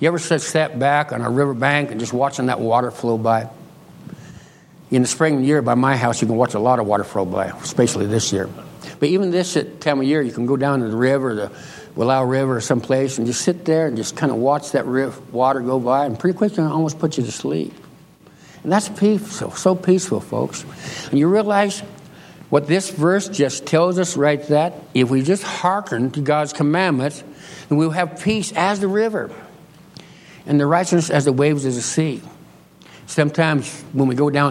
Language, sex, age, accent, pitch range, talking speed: English, male, 60-79, American, 125-160 Hz, 215 wpm